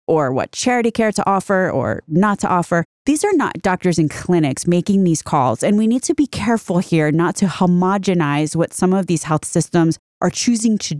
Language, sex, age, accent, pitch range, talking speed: English, female, 30-49, American, 170-235 Hz, 205 wpm